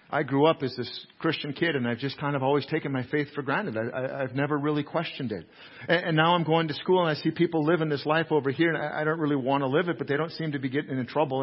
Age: 50-69